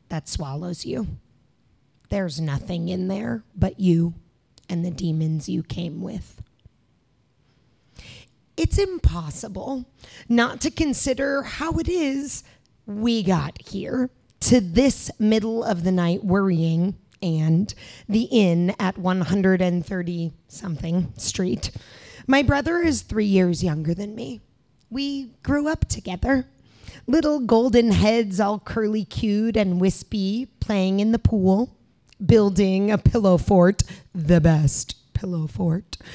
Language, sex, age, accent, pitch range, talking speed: English, female, 30-49, American, 175-235 Hz, 120 wpm